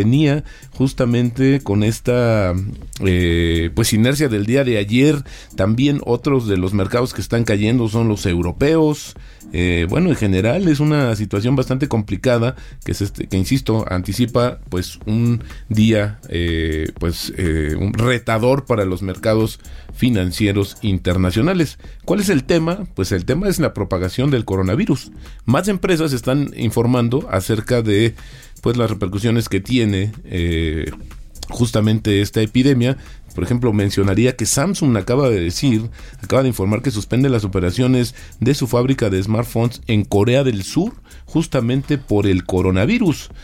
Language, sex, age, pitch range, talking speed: Spanish, male, 40-59, 100-130 Hz, 145 wpm